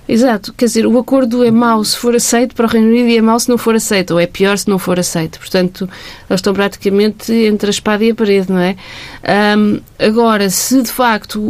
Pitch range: 190-225 Hz